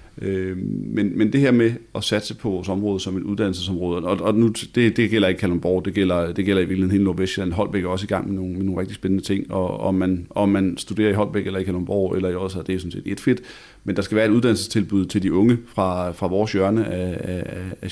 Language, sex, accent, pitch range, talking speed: Danish, male, native, 95-105 Hz, 250 wpm